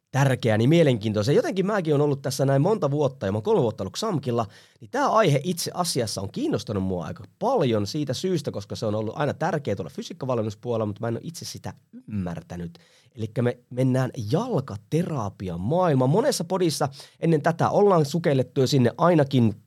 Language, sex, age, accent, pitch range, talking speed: Finnish, male, 20-39, native, 110-160 Hz, 175 wpm